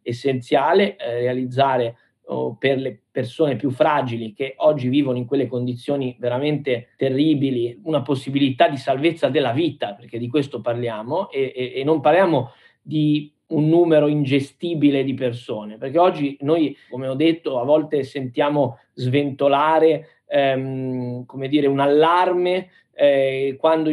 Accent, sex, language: native, male, Italian